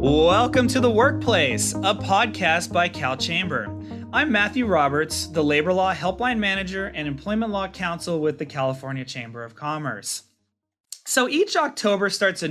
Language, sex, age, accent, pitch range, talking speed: English, male, 30-49, American, 130-180 Hz, 155 wpm